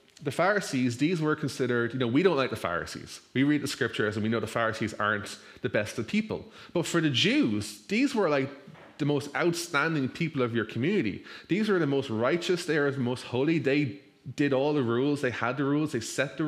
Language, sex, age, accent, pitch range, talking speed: English, male, 20-39, Irish, 125-155 Hz, 225 wpm